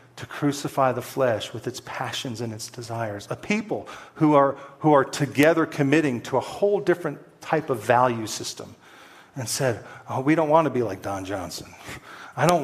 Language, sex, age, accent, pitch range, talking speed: English, male, 40-59, American, 115-145 Hz, 185 wpm